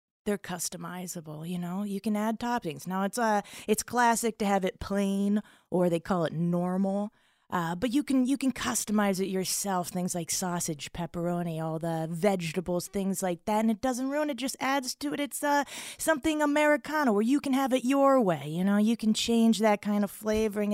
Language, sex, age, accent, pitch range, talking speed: English, female, 20-39, American, 185-245 Hz, 205 wpm